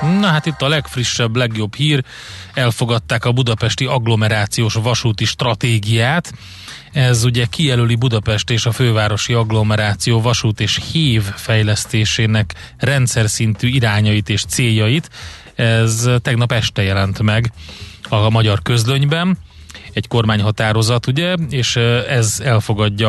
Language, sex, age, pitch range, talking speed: Hungarian, male, 30-49, 105-125 Hz, 115 wpm